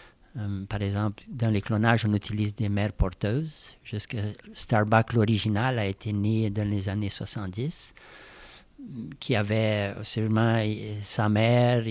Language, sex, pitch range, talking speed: French, male, 105-120 Hz, 130 wpm